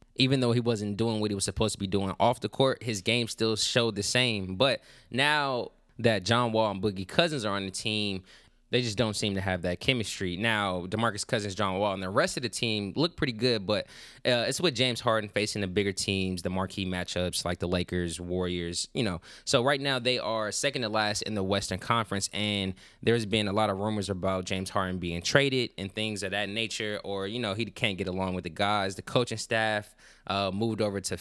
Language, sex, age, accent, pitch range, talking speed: English, male, 20-39, American, 95-115 Hz, 230 wpm